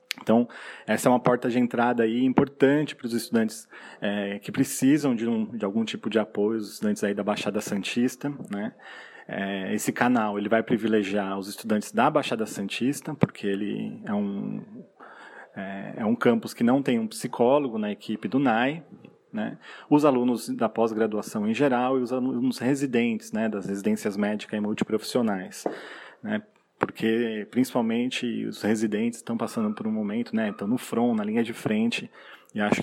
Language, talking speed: Portuguese, 170 wpm